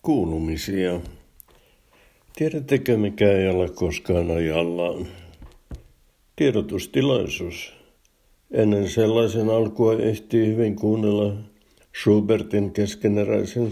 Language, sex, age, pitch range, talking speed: Finnish, male, 60-79, 90-110 Hz, 70 wpm